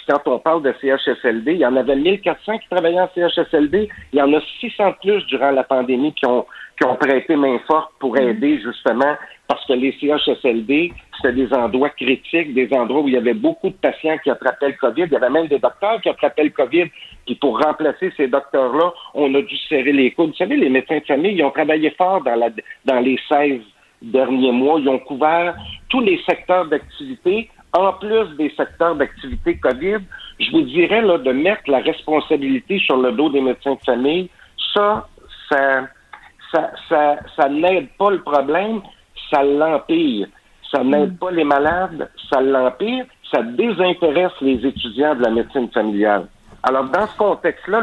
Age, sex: 50-69, male